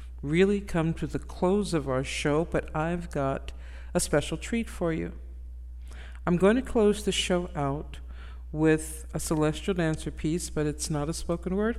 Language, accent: English, American